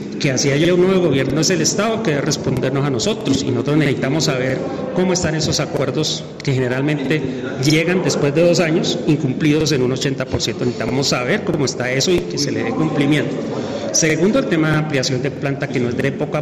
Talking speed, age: 205 wpm, 40-59